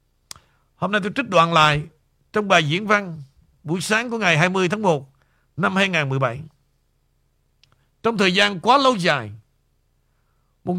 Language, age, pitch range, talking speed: Vietnamese, 60-79, 165-235 Hz, 145 wpm